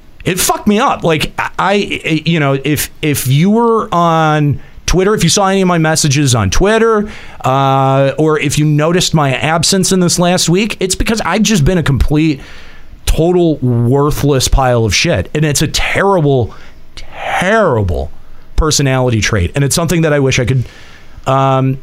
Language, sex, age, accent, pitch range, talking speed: English, male, 40-59, American, 130-175 Hz, 175 wpm